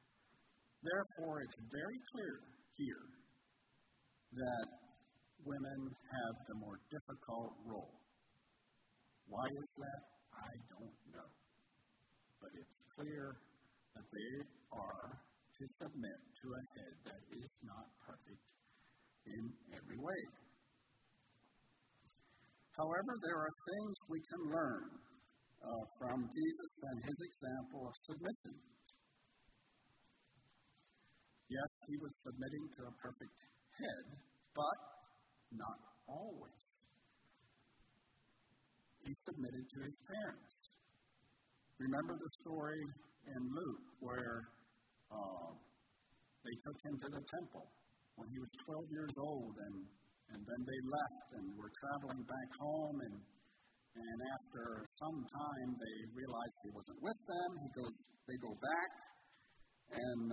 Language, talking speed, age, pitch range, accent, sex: English, 110 wpm, 50-69, 120-150 Hz, American, male